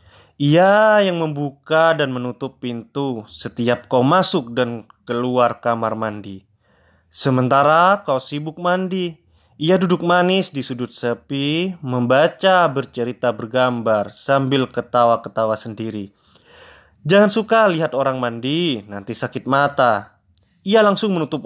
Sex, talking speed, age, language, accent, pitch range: male, 110 wpm, 20-39, English, Indonesian, 110-160 Hz